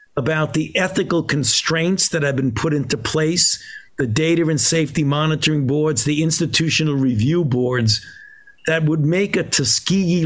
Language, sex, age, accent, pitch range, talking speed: English, male, 50-69, American, 140-185 Hz, 145 wpm